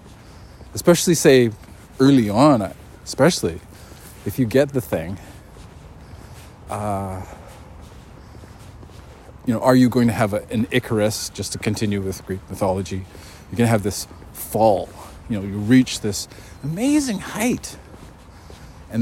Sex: male